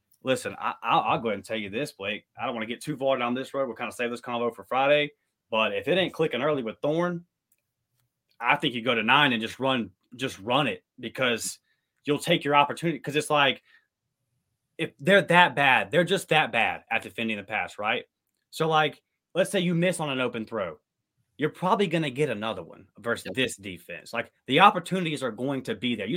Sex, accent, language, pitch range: male, American, English, 120-160 Hz